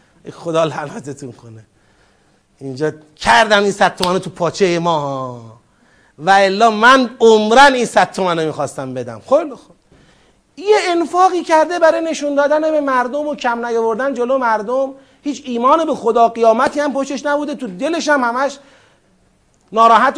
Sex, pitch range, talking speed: male, 175-270 Hz, 135 wpm